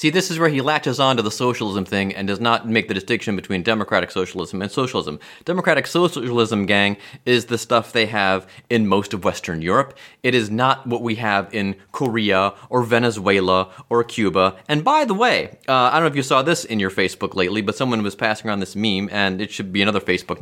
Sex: male